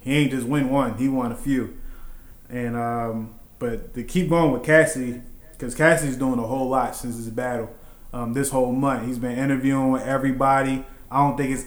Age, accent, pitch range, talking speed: 20-39, American, 120-135 Hz, 200 wpm